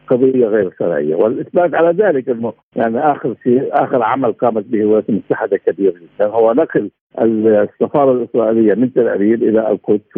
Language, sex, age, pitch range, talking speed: Arabic, male, 60-79, 120-180 Hz, 170 wpm